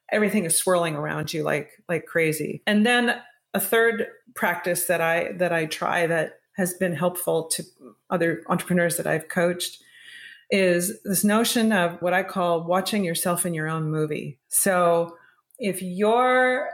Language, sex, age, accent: English, female, 30-49, American